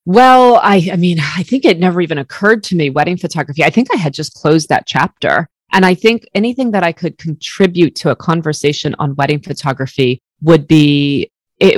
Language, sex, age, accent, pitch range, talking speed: English, female, 30-49, American, 150-190 Hz, 200 wpm